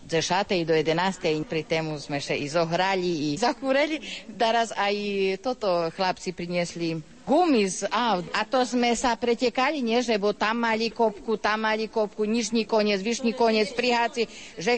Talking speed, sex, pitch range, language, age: 155 wpm, female, 165-215 Hz, Slovak, 40-59